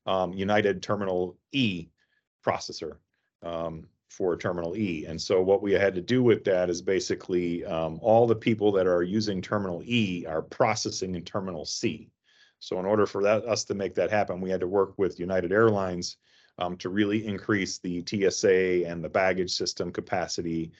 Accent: American